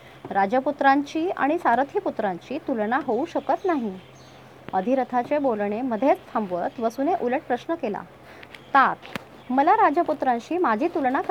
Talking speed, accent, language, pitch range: 55 wpm, native, Marathi, 225-320 Hz